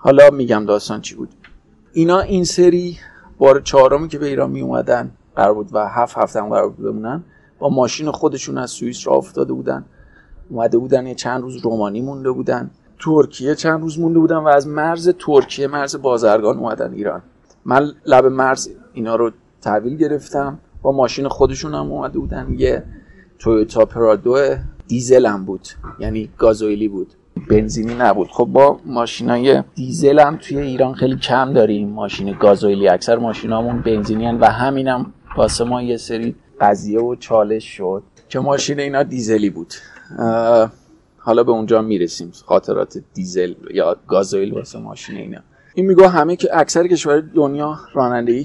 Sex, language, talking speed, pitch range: male, Persian, 155 wpm, 110-145 Hz